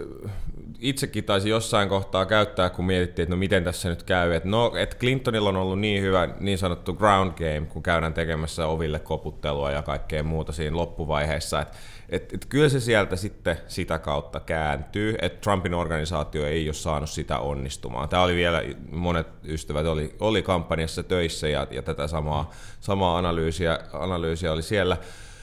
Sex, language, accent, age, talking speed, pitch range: male, Finnish, native, 30-49, 165 wpm, 80-110 Hz